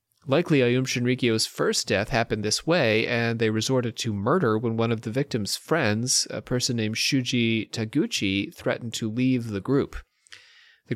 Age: 30-49